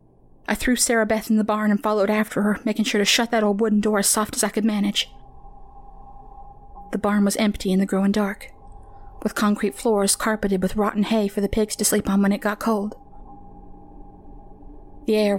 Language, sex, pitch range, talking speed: English, female, 190-215 Hz, 205 wpm